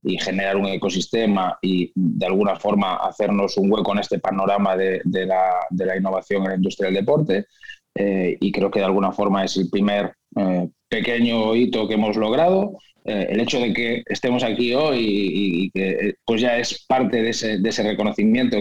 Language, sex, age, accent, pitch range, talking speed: Spanish, male, 20-39, Spanish, 95-120 Hz, 195 wpm